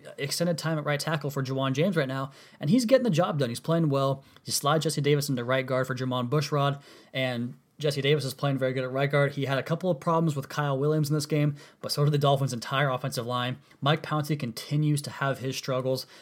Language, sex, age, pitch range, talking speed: English, male, 20-39, 125-145 Hz, 245 wpm